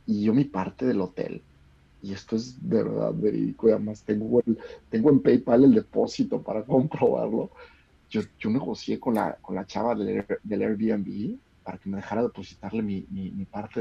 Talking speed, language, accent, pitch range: 185 wpm, Spanish, Mexican, 100-130 Hz